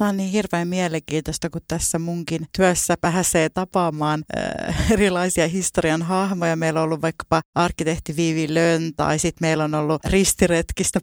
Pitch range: 155-185 Hz